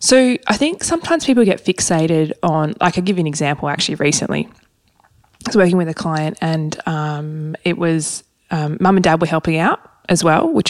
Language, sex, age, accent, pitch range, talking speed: English, female, 20-39, Australian, 150-180 Hz, 200 wpm